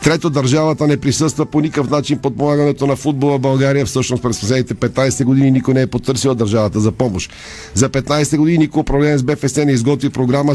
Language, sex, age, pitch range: Bulgarian, male, 50-69, 130-150 Hz